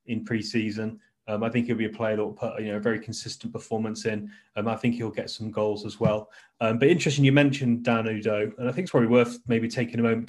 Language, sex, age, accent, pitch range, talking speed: English, male, 20-39, British, 110-125 Hz, 265 wpm